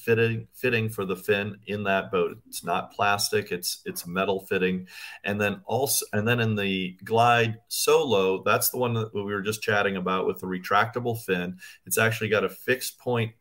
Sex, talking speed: male, 190 wpm